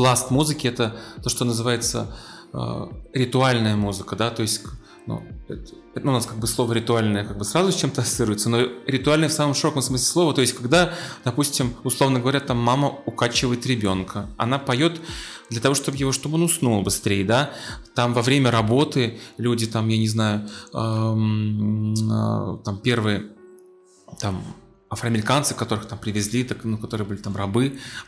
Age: 20-39